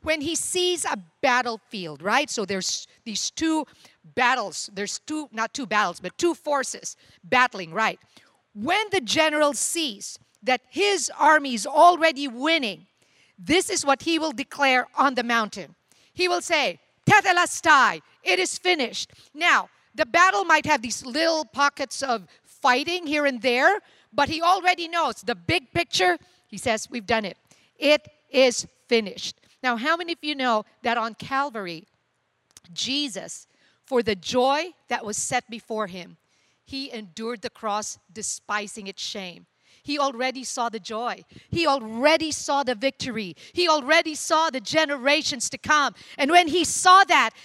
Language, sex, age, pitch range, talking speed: English, female, 50-69, 220-315 Hz, 155 wpm